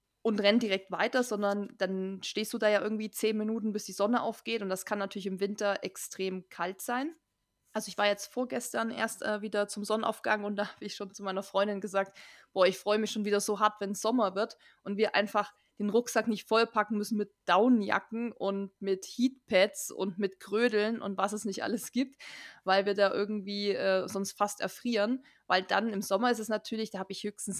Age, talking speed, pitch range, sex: 20-39, 215 wpm, 195-230 Hz, female